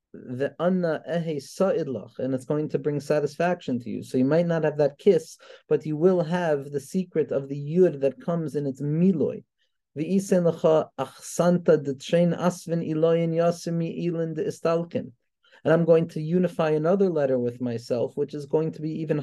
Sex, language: male, English